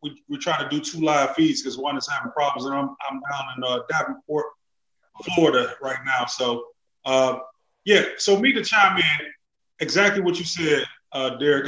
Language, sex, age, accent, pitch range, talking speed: English, male, 30-49, American, 135-170 Hz, 185 wpm